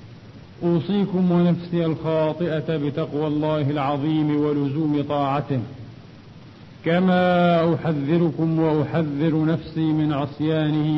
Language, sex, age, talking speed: Arabic, male, 40-59, 75 wpm